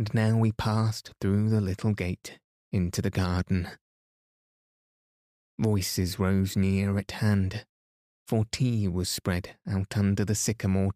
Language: English